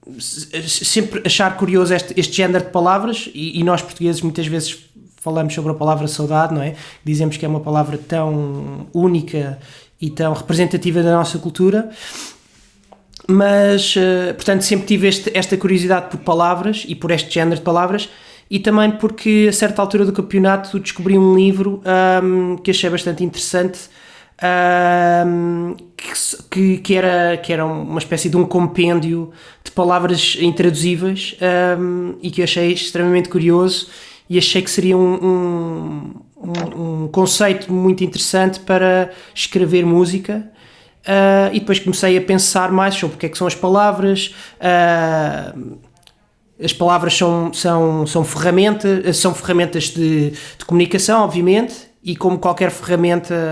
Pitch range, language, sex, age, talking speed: 165-190 Hz, Portuguese, male, 20-39, 135 wpm